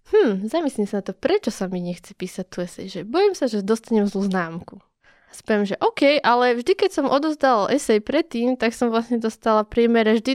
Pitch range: 200-265 Hz